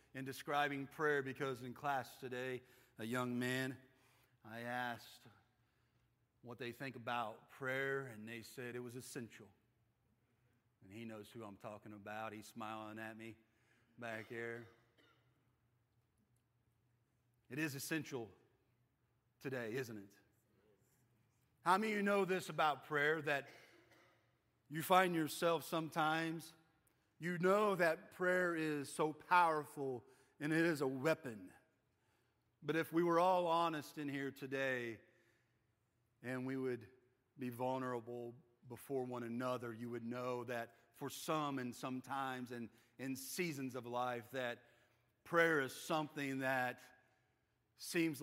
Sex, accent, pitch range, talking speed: male, American, 120-145 Hz, 130 wpm